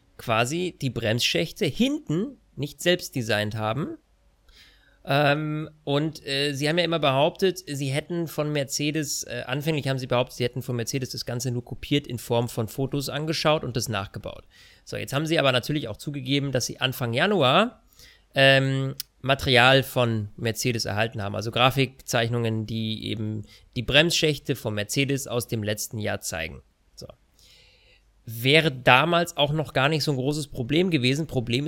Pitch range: 120-155 Hz